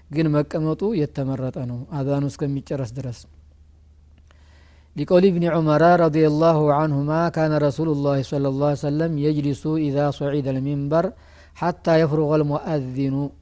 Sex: male